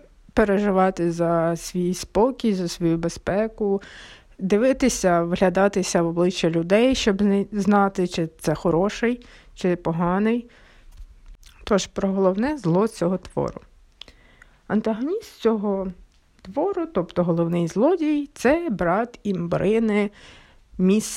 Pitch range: 175-225 Hz